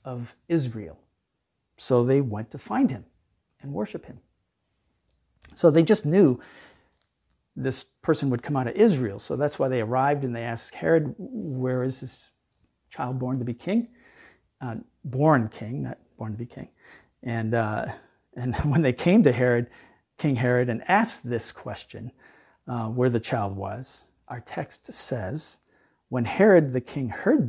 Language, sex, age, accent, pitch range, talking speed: English, male, 50-69, American, 115-145 Hz, 160 wpm